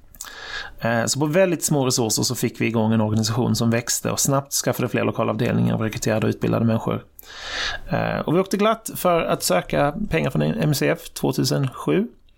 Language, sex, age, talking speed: Swedish, male, 30-49, 165 wpm